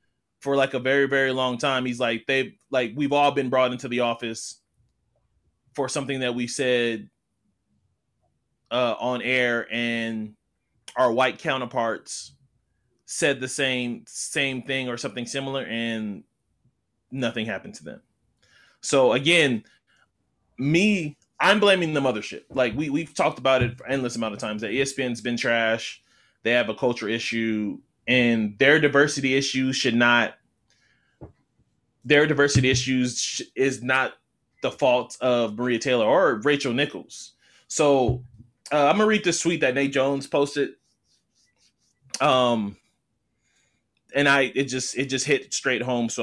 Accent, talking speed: American, 145 wpm